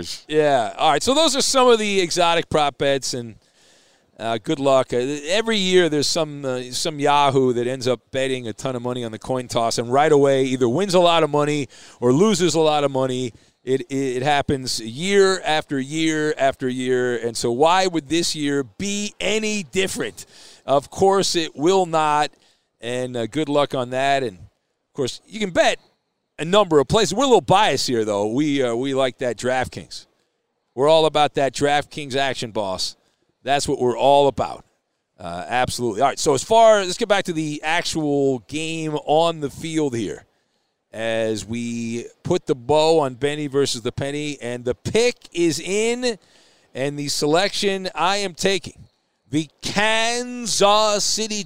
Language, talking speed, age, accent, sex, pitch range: English, 180 wpm, 40-59, American, male, 130-190 Hz